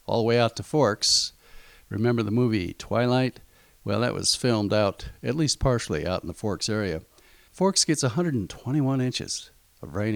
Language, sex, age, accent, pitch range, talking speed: English, male, 50-69, American, 105-145 Hz, 170 wpm